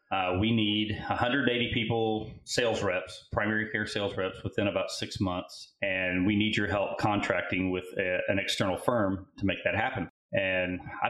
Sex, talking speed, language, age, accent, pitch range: male, 170 wpm, English, 30-49, American, 90-105 Hz